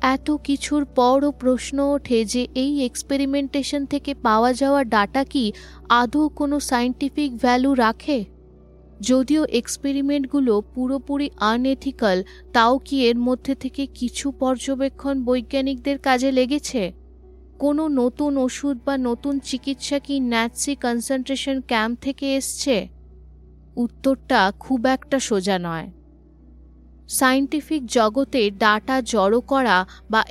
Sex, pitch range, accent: female, 220-270 Hz, native